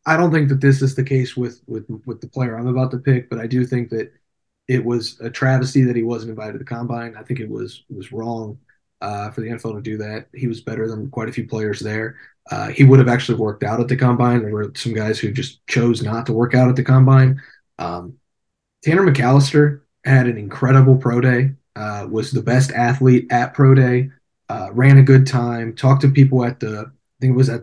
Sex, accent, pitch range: male, American, 120-135 Hz